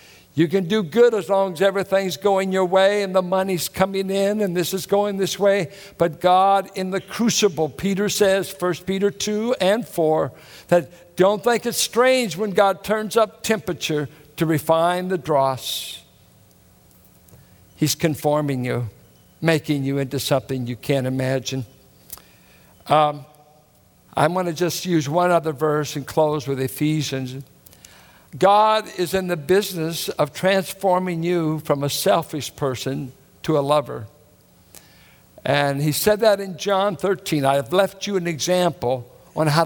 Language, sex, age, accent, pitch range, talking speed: English, male, 60-79, American, 150-195 Hz, 150 wpm